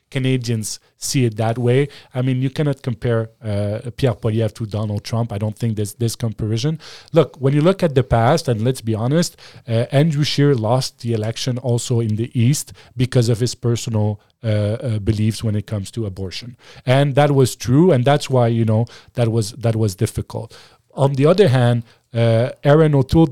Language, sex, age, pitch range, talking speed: English, male, 40-59, 110-130 Hz, 195 wpm